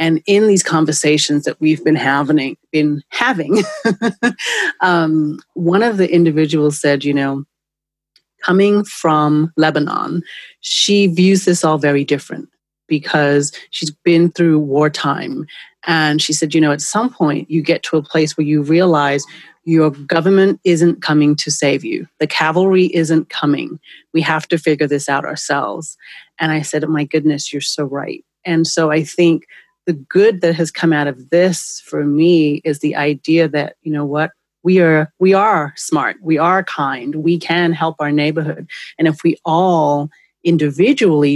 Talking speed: 165 wpm